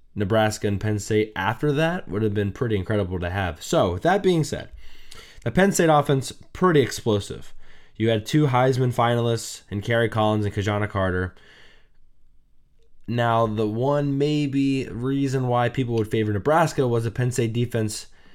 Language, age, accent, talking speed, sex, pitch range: English, 20-39, American, 165 wpm, male, 100-120 Hz